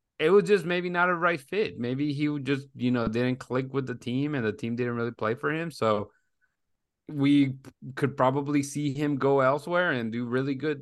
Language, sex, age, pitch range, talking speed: English, male, 20-39, 105-130 Hz, 215 wpm